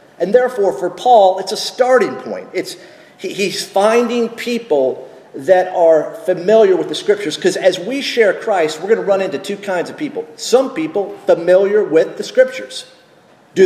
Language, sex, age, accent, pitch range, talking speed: English, male, 40-59, American, 175-275 Hz, 175 wpm